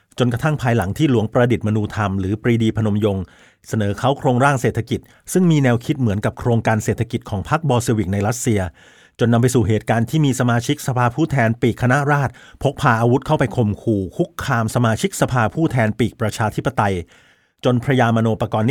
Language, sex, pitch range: Thai, male, 110-130 Hz